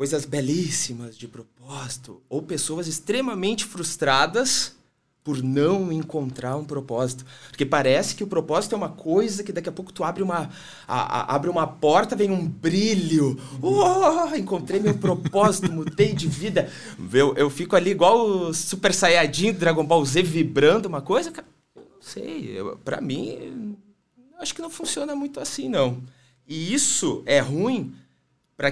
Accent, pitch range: Brazilian, 140-185 Hz